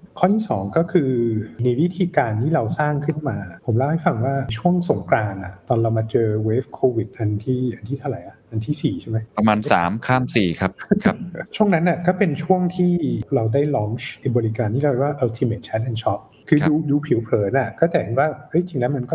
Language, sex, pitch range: Thai, male, 110-150 Hz